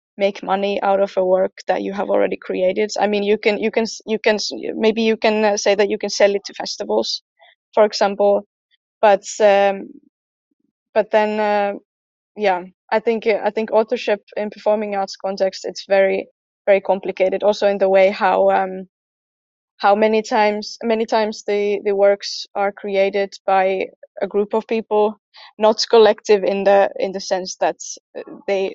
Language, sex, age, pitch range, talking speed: English, female, 20-39, 195-215 Hz, 170 wpm